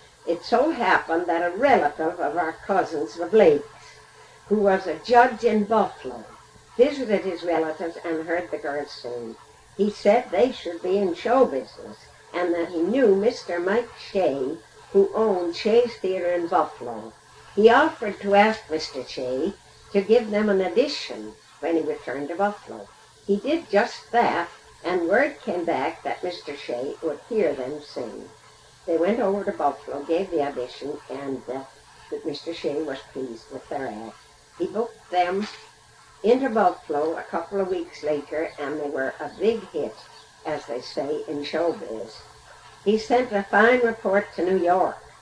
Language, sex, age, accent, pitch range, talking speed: English, female, 60-79, American, 165-215 Hz, 165 wpm